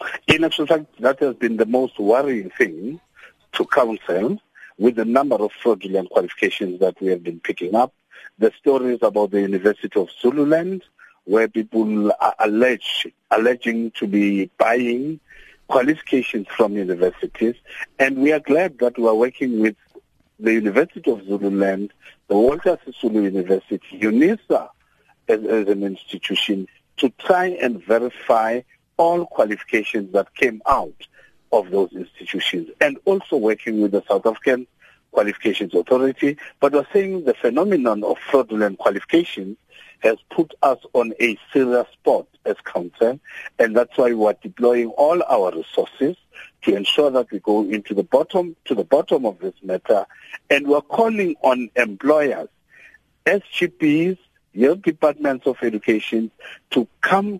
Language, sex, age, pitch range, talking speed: English, male, 50-69, 105-150 Hz, 145 wpm